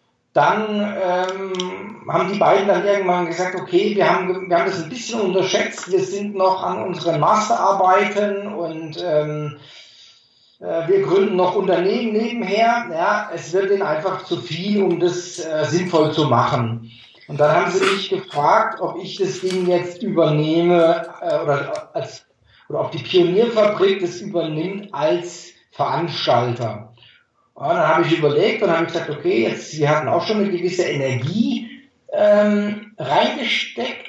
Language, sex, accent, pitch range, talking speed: German, male, German, 170-210 Hz, 155 wpm